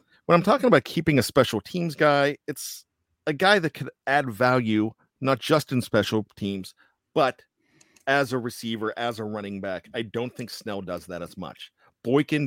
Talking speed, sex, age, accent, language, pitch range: 185 wpm, male, 40-59, American, English, 110-150 Hz